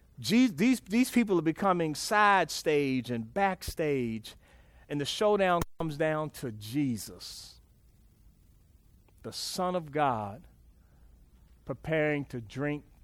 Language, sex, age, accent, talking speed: English, male, 40-59, American, 105 wpm